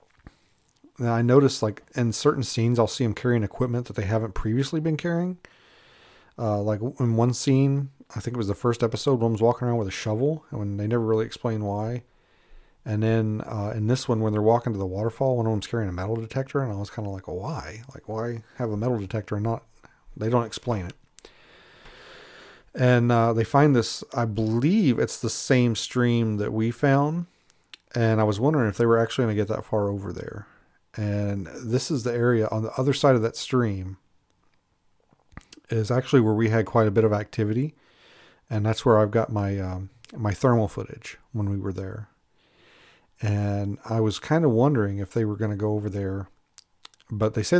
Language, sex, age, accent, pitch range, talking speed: English, male, 40-59, American, 105-125 Hz, 205 wpm